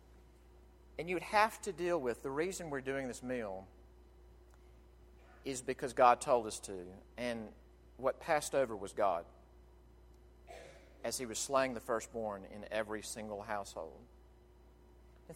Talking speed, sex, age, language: 135 wpm, male, 40-59, English